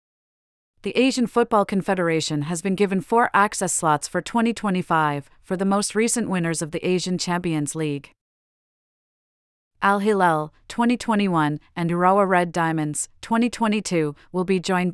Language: English